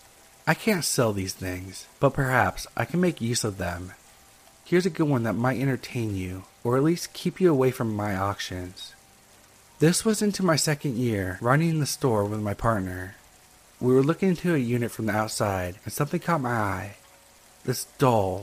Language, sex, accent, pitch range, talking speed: English, male, American, 100-145 Hz, 190 wpm